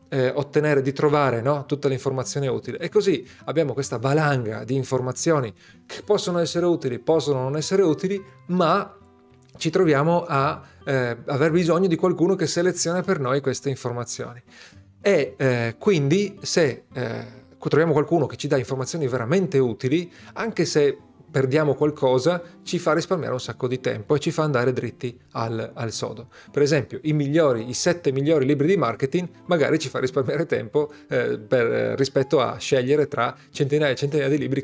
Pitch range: 125-160 Hz